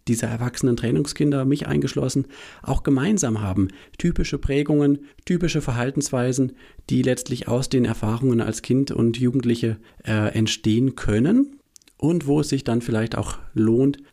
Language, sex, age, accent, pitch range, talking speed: German, male, 40-59, German, 105-125 Hz, 135 wpm